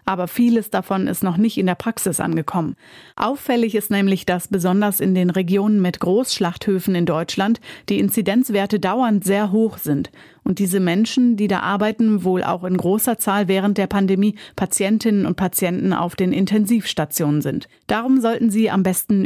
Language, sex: German, female